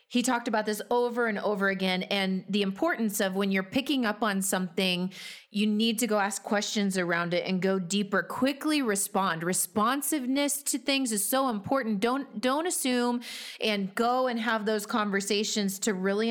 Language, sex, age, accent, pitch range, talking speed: English, female, 30-49, American, 190-220 Hz, 175 wpm